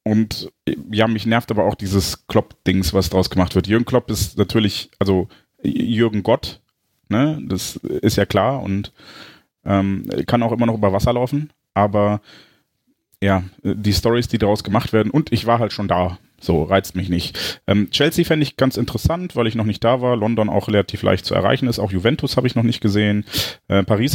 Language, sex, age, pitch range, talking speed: German, male, 30-49, 100-125 Hz, 195 wpm